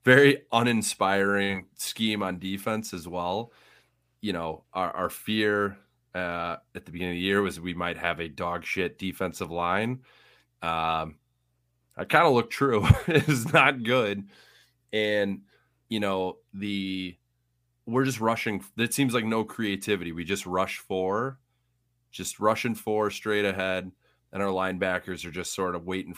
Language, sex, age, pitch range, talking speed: English, male, 30-49, 90-110 Hz, 150 wpm